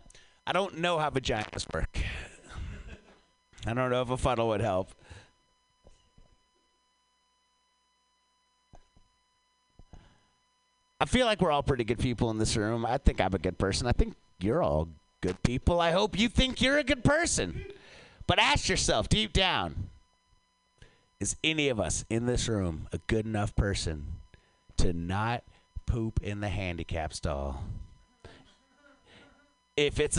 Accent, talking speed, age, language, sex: American, 140 wpm, 30-49, English, male